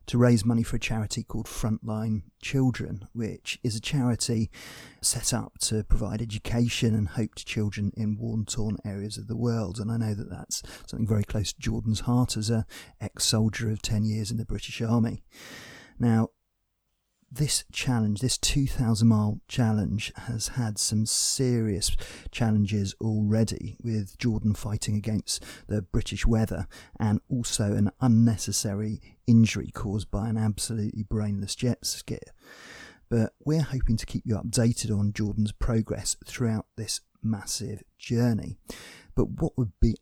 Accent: British